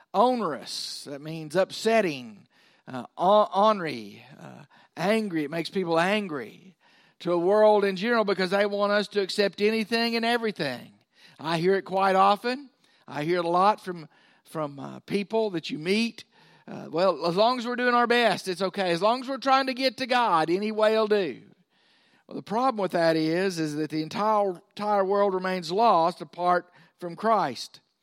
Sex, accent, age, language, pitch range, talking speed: male, American, 50-69, English, 180-220 Hz, 180 wpm